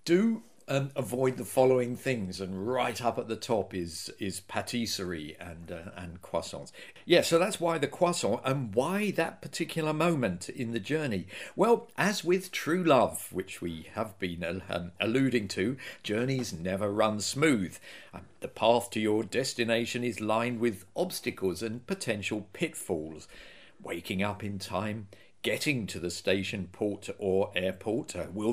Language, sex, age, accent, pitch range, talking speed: English, male, 50-69, British, 100-135 Hz, 160 wpm